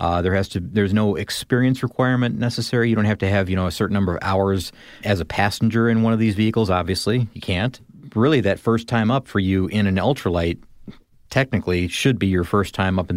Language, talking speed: English, 230 wpm